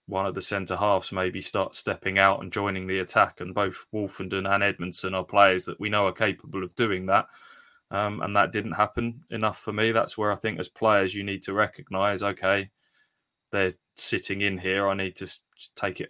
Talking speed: 205 wpm